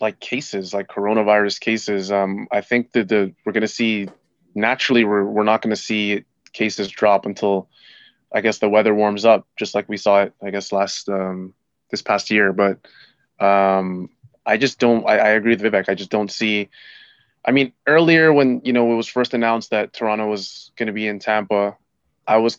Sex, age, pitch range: male, 20-39, 100-115 Hz